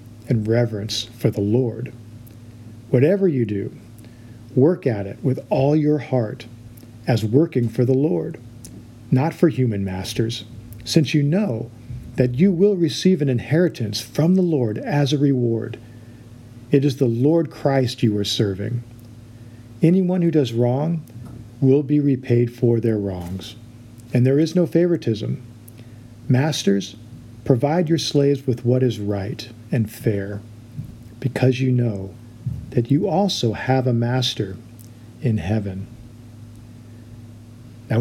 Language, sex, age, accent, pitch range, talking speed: English, male, 50-69, American, 115-140 Hz, 135 wpm